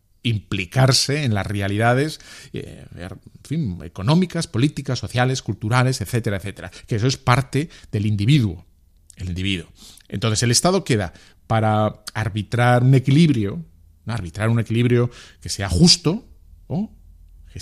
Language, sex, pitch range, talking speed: Spanish, male, 90-130 Hz, 130 wpm